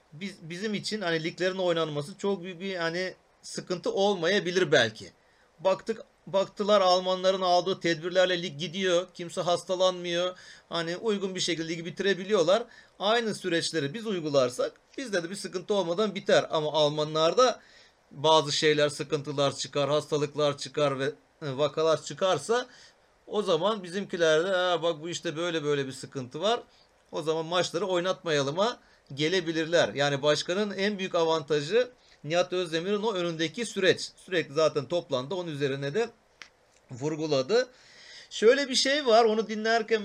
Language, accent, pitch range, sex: Turkish, native, 155-200 Hz, male